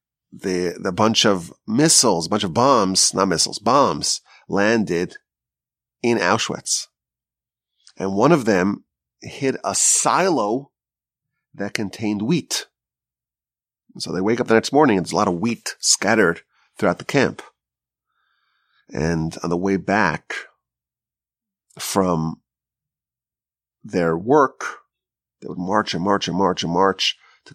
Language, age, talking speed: English, 30-49, 135 wpm